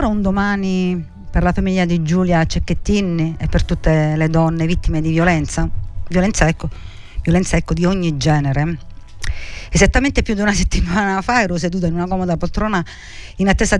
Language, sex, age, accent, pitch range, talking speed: Italian, female, 50-69, native, 150-180 Hz, 160 wpm